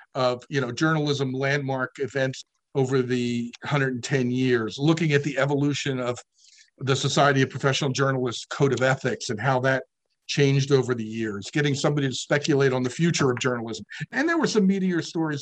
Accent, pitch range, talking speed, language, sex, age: American, 125-155 Hz, 175 wpm, English, male, 50-69